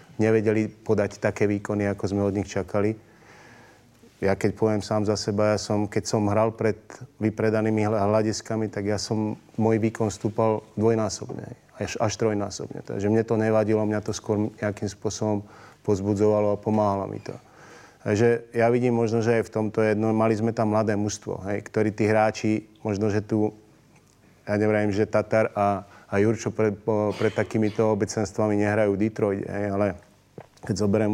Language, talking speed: Slovak, 160 wpm